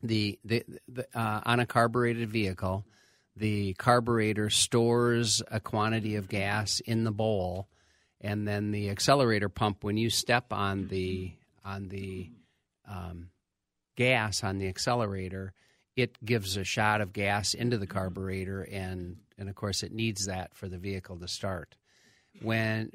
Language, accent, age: English, American, 50-69